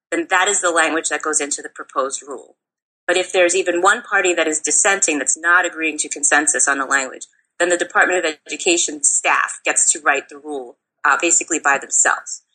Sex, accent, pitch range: female, American, 150-180 Hz